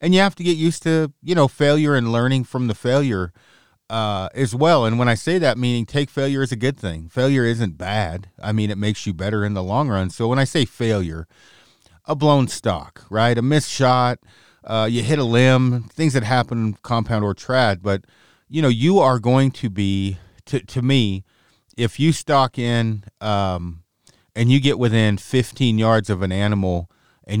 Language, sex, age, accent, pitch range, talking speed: English, male, 40-59, American, 105-130 Hz, 200 wpm